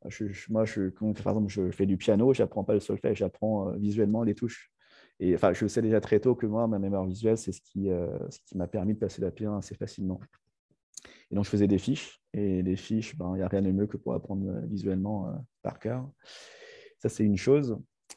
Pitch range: 95-110 Hz